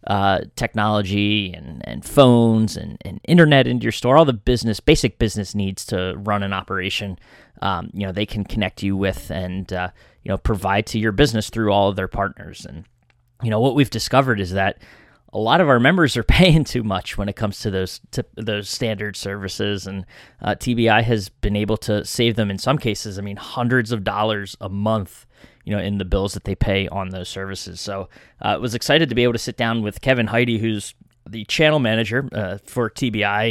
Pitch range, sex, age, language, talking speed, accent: 95-115 Hz, male, 20-39, English, 215 wpm, American